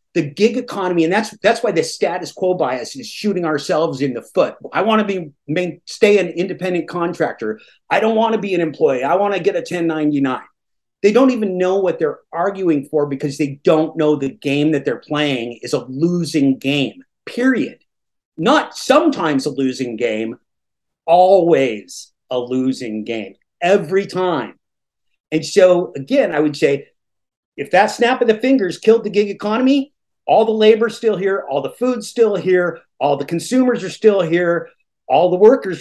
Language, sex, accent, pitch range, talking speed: English, male, American, 155-215 Hz, 180 wpm